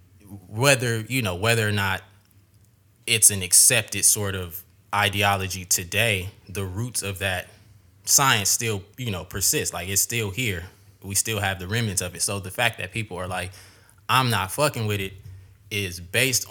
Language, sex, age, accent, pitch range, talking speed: English, male, 20-39, American, 95-115 Hz, 170 wpm